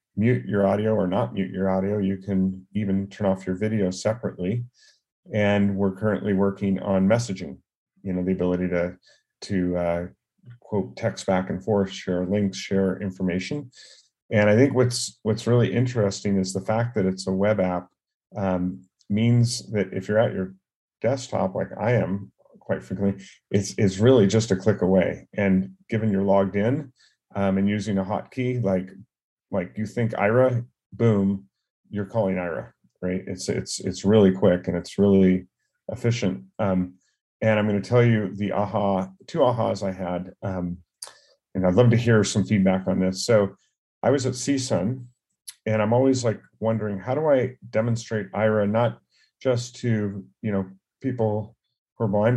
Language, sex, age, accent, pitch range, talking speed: English, male, 40-59, American, 95-110 Hz, 170 wpm